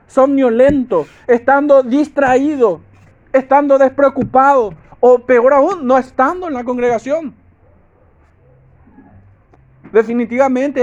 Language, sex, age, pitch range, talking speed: Spanish, male, 50-69, 185-270 Hz, 80 wpm